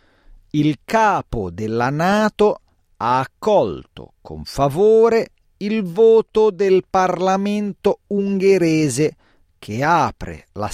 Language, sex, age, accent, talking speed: Italian, male, 40-59, native, 90 wpm